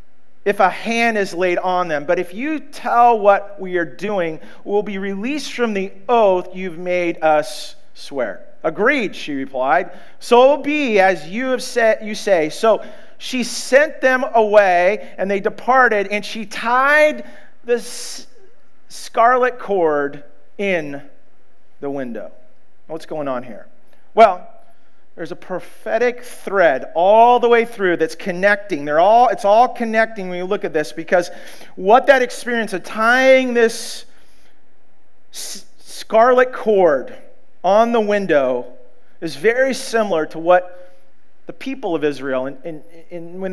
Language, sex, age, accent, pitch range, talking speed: English, male, 40-59, American, 180-240 Hz, 140 wpm